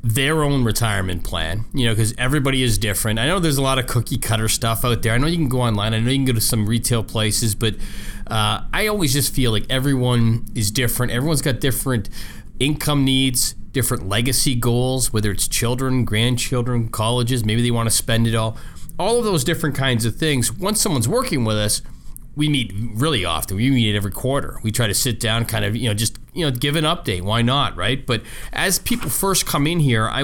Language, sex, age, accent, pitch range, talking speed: English, male, 30-49, American, 105-135 Hz, 220 wpm